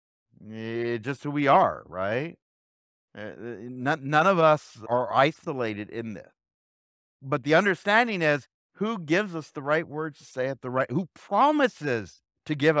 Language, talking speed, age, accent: English, 145 wpm, 50-69, American